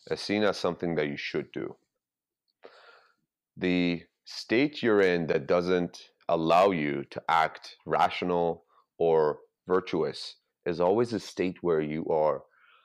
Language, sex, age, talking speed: English, male, 30-49, 130 wpm